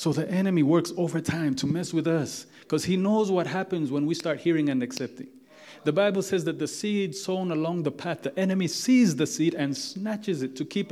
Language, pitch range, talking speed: English, 155-195 Hz, 225 wpm